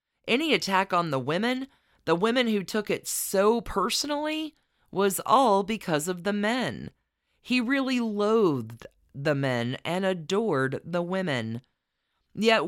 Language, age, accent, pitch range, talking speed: English, 40-59, American, 150-220 Hz, 135 wpm